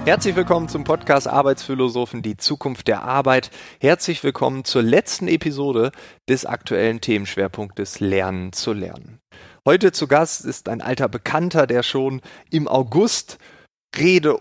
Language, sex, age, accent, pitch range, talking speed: German, male, 30-49, German, 110-140 Hz, 135 wpm